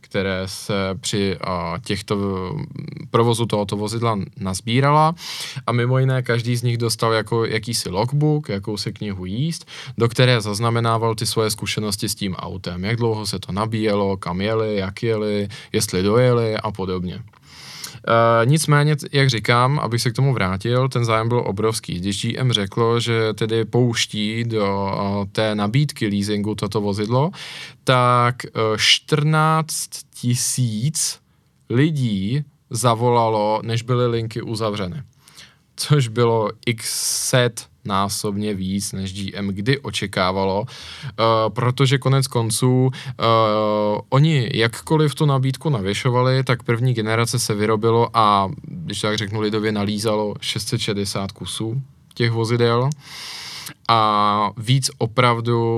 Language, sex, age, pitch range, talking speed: Czech, male, 20-39, 105-130 Hz, 120 wpm